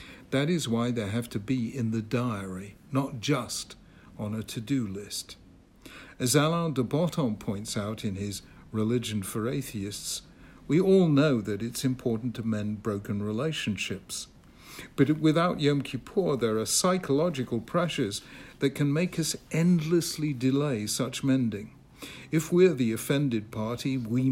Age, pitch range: 60-79, 110-145 Hz